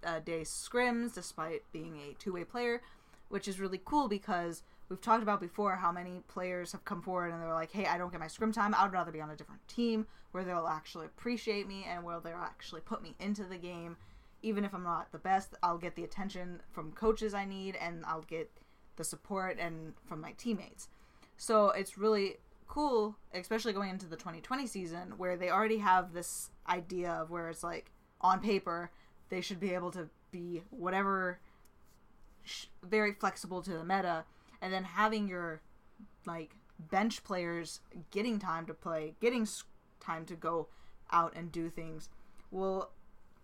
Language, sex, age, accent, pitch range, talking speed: English, female, 10-29, American, 170-205 Hz, 185 wpm